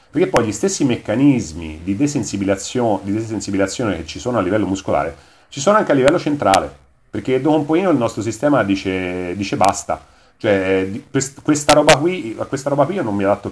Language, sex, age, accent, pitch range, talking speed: Italian, male, 40-59, native, 95-130 Hz, 175 wpm